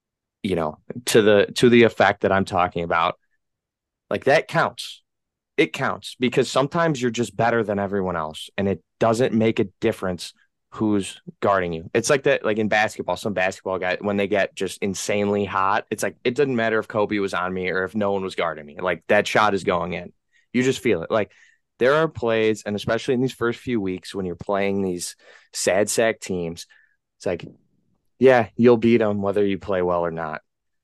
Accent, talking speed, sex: American, 205 wpm, male